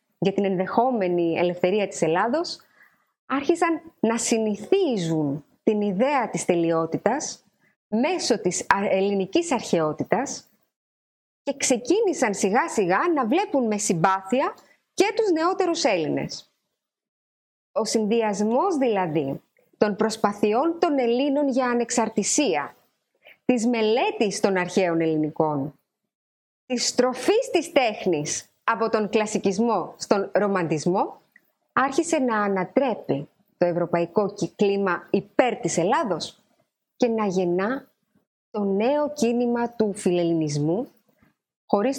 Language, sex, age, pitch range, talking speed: Greek, female, 20-39, 185-255 Hz, 100 wpm